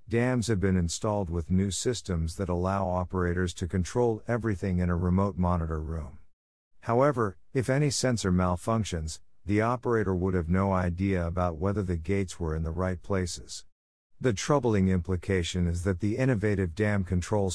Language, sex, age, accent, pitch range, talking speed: English, male, 50-69, American, 85-110 Hz, 160 wpm